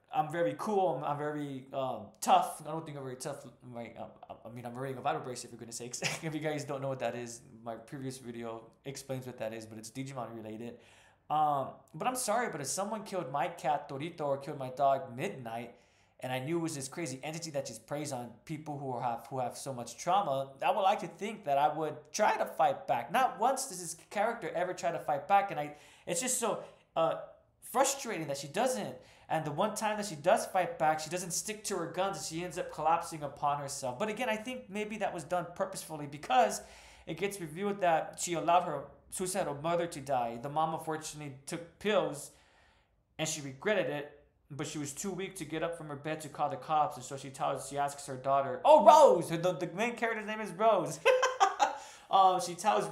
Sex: male